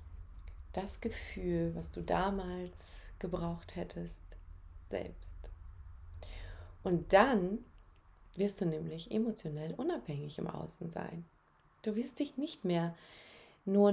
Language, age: German, 30-49